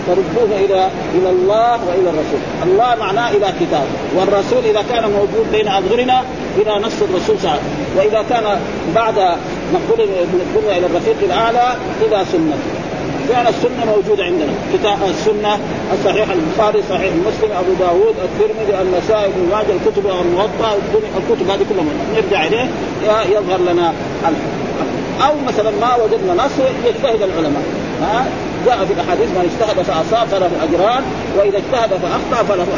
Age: 50-69